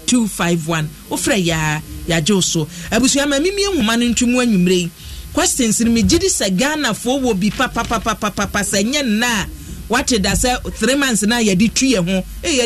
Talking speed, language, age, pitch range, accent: 175 wpm, English, 40-59, 180-225 Hz, Nigerian